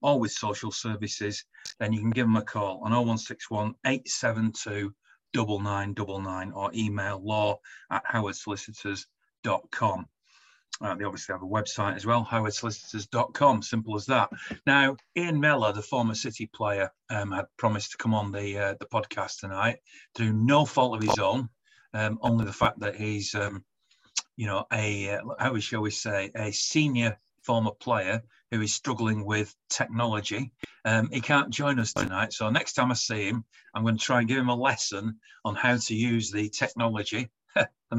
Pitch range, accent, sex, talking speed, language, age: 105-120 Hz, British, male, 170 wpm, English, 40-59